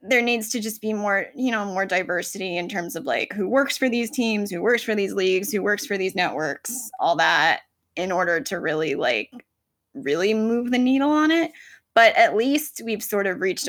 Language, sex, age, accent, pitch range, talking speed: English, female, 10-29, American, 190-255 Hz, 215 wpm